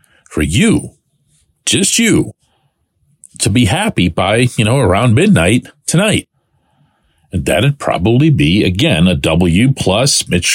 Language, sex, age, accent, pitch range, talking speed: English, male, 40-59, American, 110-155 Hz, 125 wpm